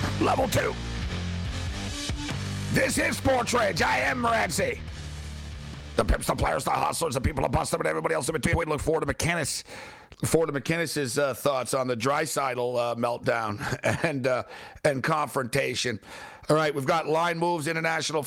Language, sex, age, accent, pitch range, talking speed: English, male, 50-69, American, 140-175 Hz, 170 wpm